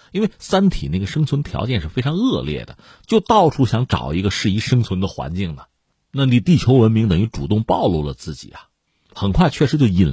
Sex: male